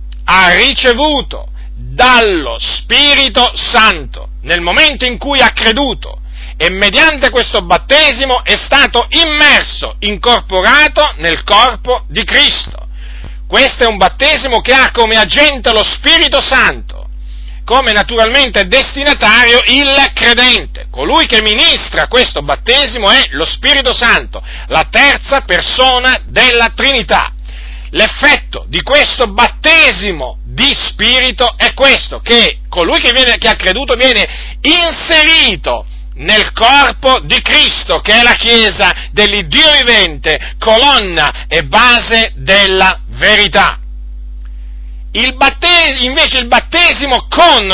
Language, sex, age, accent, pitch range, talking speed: Italian, male, 40-59, native, 210-275 Hz, 110 wpm